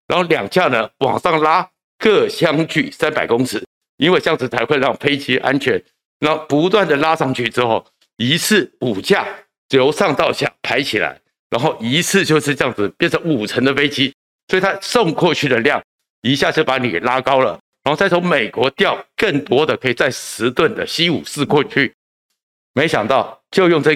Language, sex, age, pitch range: Chinese, male, 60-79, 125-165 Hz